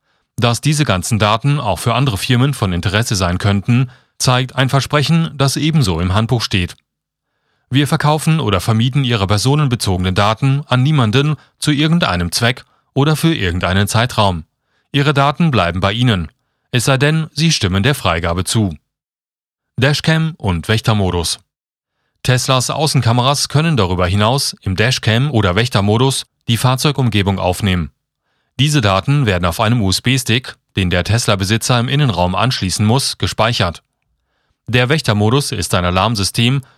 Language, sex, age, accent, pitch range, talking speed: German, male, 30-49, German, 100-135 Hz, 135 wpm